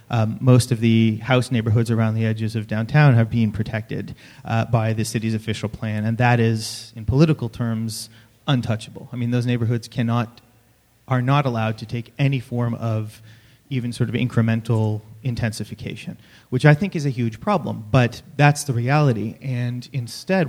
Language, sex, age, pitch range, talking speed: English, male, 30-49, 110-130 Hz, 170 wpm